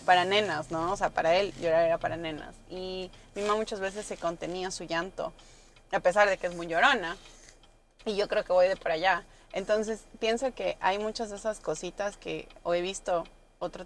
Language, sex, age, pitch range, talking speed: Spanish, female, 30-49, 180-215 Hz, 210 wpm